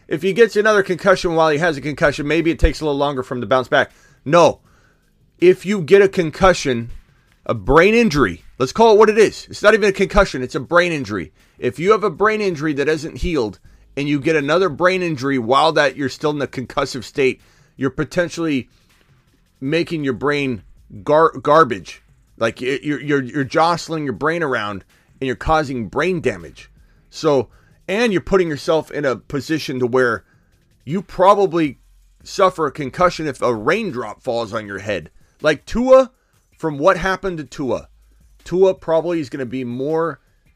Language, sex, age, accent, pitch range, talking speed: English, male, 30-49, American, 125-170 Hz, 185 wpm